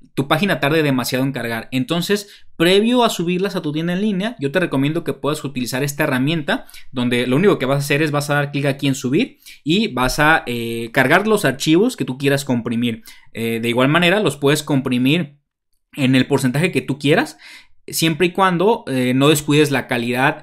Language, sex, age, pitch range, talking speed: Spanish, male, 20-39, 130-165 Hz, 205 wpm